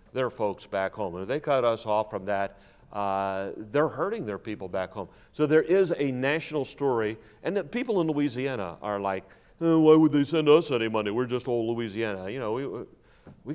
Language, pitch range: English, 105-135 Hz